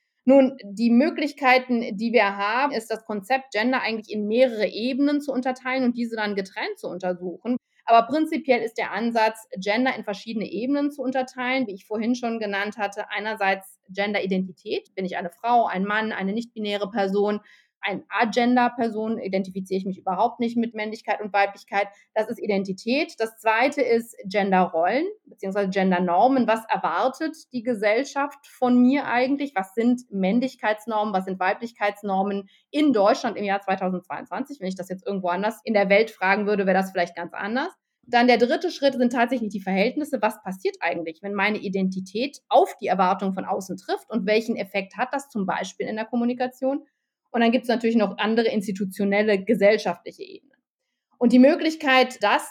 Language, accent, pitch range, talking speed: German, German, 200-255 Hz, 170 wpm